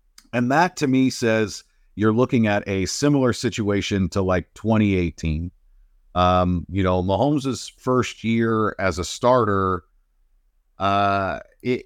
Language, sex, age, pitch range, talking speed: English, male, 50-69, 95-130 Hz, 125 wpm